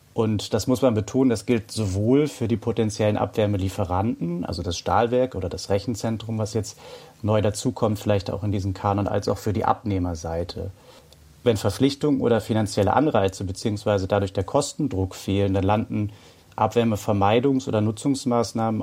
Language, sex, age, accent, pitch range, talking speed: German, male, 30-49, German, 100-120 Hz, 150 wpm